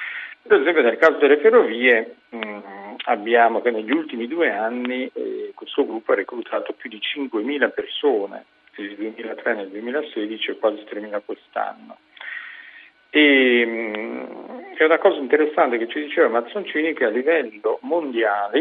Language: Italian